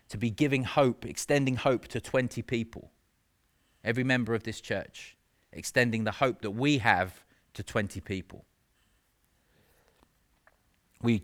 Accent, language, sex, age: British, English, male, 30-49